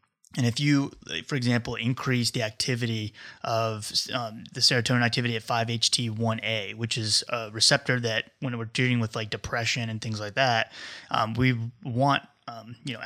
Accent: American